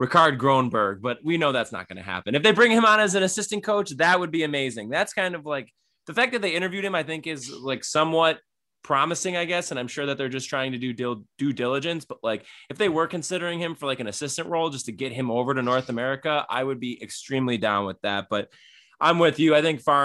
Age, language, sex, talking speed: 20-39, English, male, 255 wpm